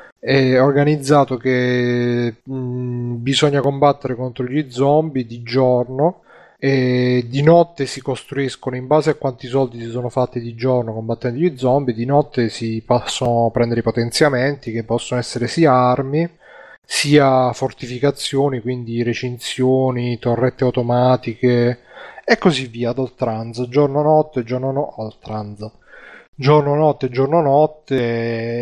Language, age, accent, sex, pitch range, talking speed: Italian, 30-49, native, male, 120-135 Hz, 130 wpm